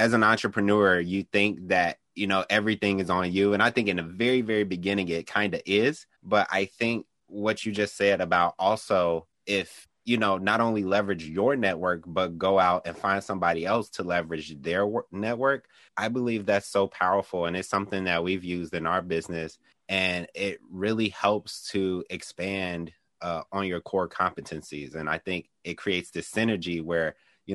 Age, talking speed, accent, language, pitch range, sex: 30-49, 185 wpm, American, English, 85-100 Hz, male